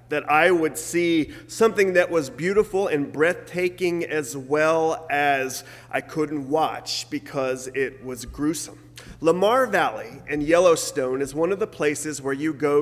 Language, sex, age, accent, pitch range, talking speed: English, male, 30-49, American, 140-170 Hz, 150 wpm